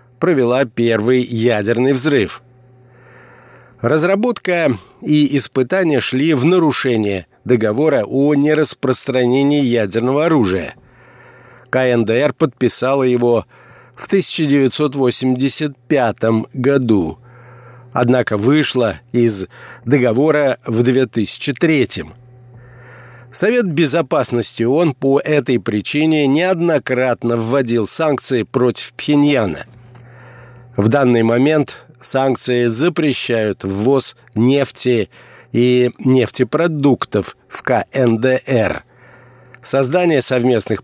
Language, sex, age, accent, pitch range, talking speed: Russian, male, 50-69, native, 120-140 Hz, 75 wpm